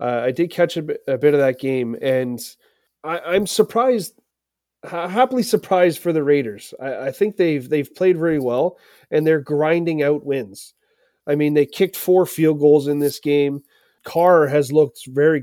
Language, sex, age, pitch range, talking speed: English, male, 30-49, 140-165 Hz, 180 wpm